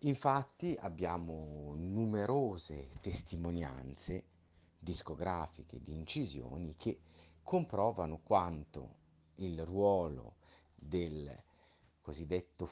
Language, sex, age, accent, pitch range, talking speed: Italian, male, 50-69, native, 80-105 Hz, 65 wpm